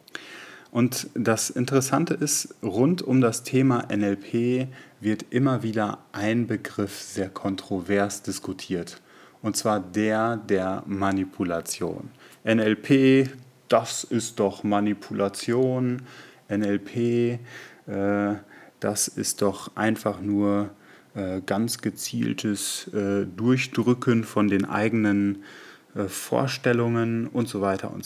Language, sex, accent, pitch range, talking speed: German, male, German, 100-125 Hz, 95 wpm